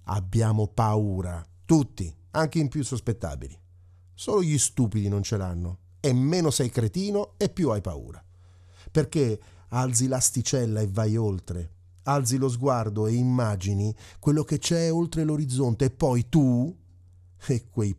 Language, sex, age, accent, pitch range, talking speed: Italian, male, 40-59, native, 90-130 Hz, 140 wpm